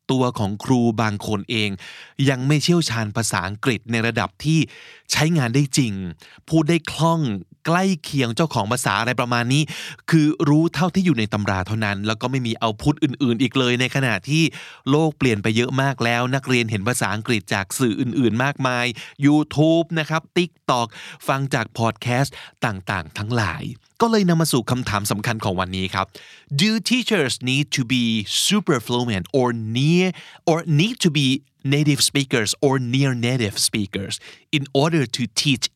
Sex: male